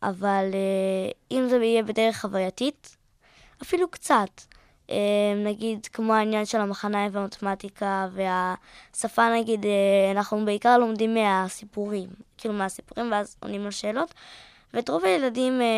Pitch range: 205-255 Hz